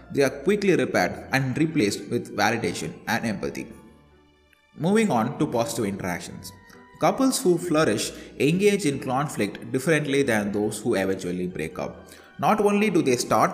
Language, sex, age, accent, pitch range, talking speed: English, male, 20-39, Indian, 110-155 Hz, 145 wpm